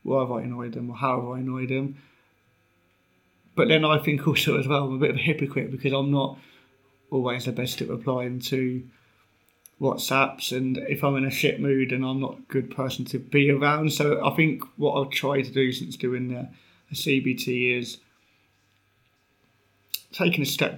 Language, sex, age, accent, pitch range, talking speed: English, male, 30-49, British, 125-140 Hz, 195 wpm